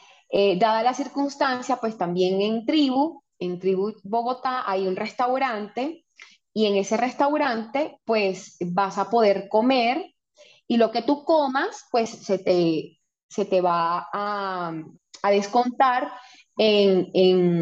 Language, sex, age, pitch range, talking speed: English, female, 20-39, 190-255 Hz, 135 wpm